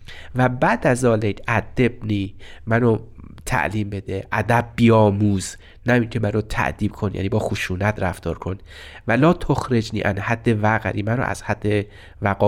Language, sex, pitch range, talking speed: Persian, male, 95-120 Hz, 155 wpm